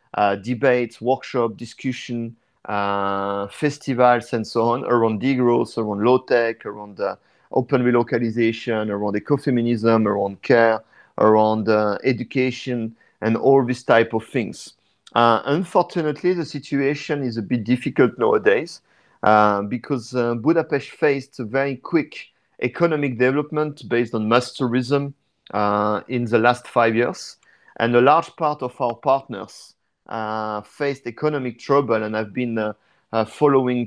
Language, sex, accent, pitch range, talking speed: English, male, French, 110-135 Hz, 135 wpm